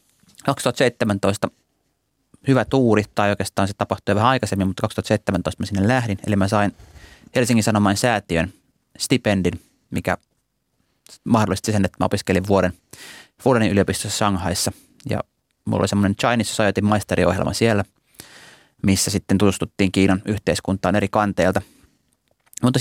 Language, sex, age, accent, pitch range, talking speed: Finnish, male, 30-49, native, 95-120 Hz, 120 wpm